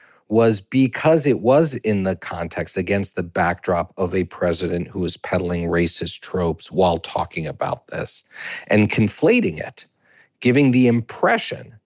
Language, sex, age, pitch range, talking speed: English, male, 40-59, 95-125 Hz, 140 wpm